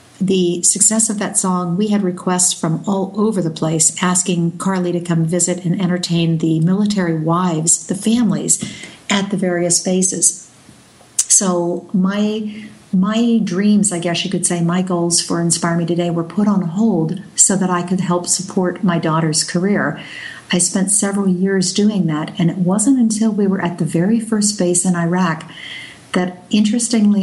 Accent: American